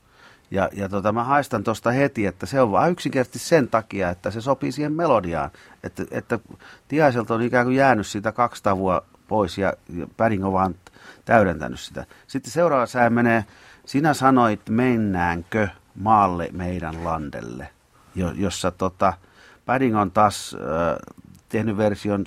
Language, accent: Finnish, native